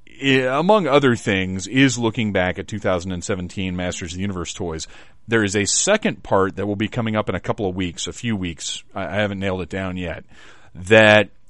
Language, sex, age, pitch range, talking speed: English, male, 40-59, 95-125 Hz, 200 wpm